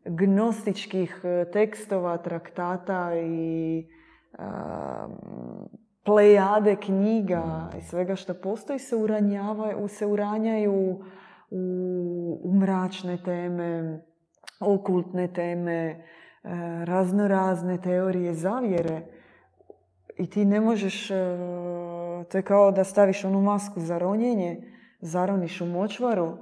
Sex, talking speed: female, 95 wpm